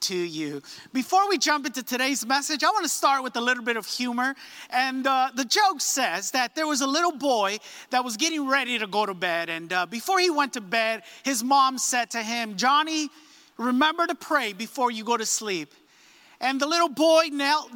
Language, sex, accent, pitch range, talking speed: English, male, American, 260-335 Hz, 215 wpm